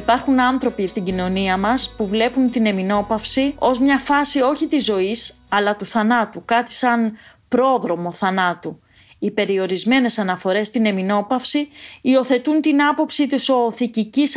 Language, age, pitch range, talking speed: Greek, 30-49, 195-265 Hz, 135 wpm